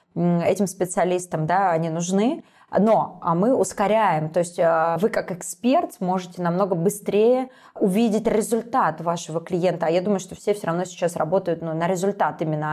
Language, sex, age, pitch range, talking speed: Russian, female, 20-39, 170-205 Hz, 155 wpm